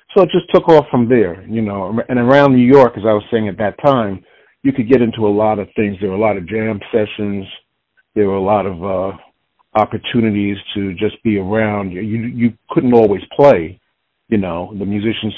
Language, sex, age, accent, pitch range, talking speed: English, male, 60-79, American, 90-110 Hz, 215 wpm